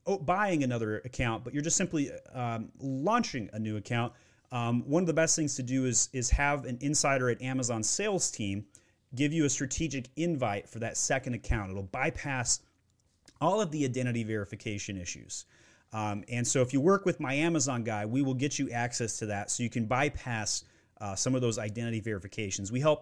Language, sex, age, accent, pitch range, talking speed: English, male, 30-49, American, 105-135 Hz, 200 wpm